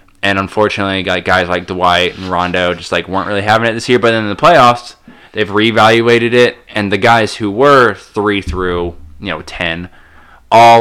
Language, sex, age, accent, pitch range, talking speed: English, male, 20-39, American, 90-110 Hz, 190 wpm